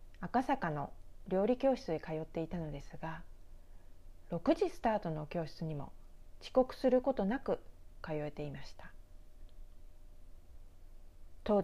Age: 40-59